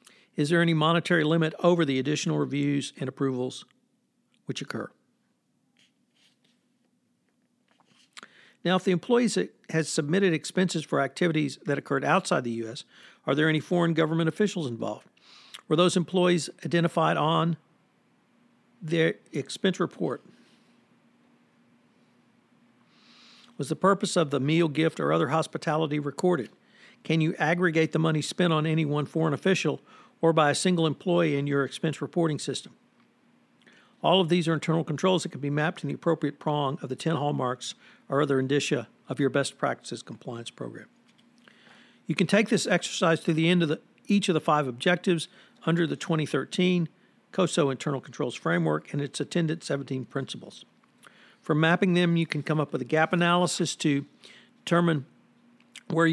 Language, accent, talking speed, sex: English, American, 150 wpm, male